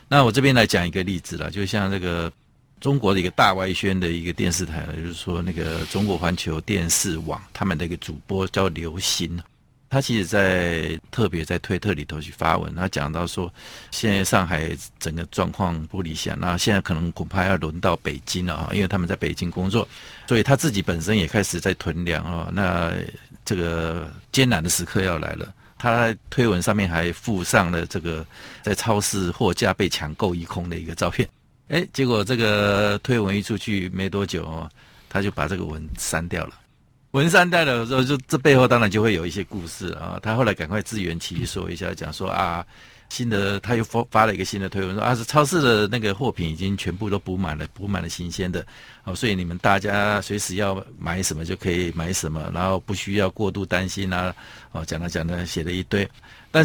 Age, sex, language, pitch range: 50-69, male, Chinese, 85-110 Hz